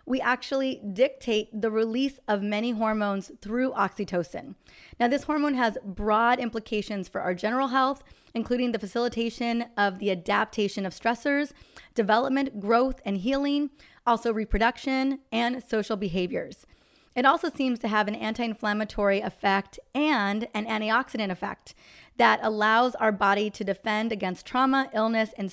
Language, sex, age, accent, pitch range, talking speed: English, female, 20-39, American, 205-255 Hz, 140 wpm